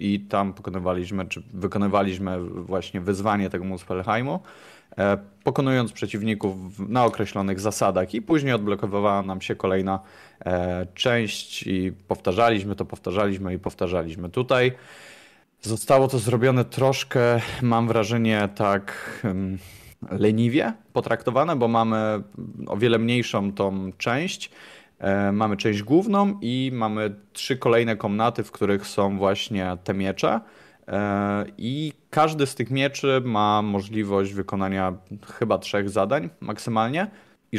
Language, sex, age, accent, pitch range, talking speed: Polish, male, 20-39, native, 95-115 Hz, 115 wpm